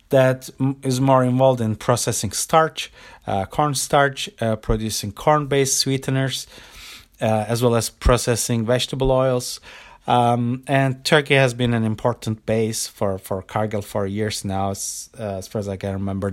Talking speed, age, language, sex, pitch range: 155 wpm, 30-49, English, male, 100-125 Hz